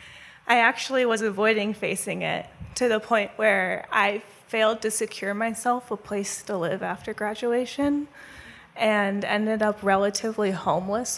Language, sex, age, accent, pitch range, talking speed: English, female, 20-39, American, 200-235 Hz, 140 wpm